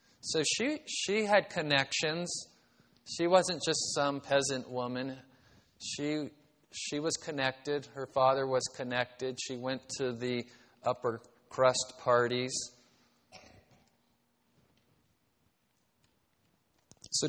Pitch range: 110-140 Hz